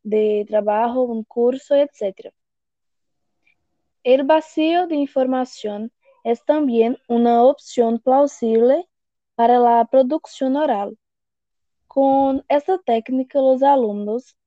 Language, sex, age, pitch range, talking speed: Portuguese, female, 20-39, 235-285 Hz, 95 wpm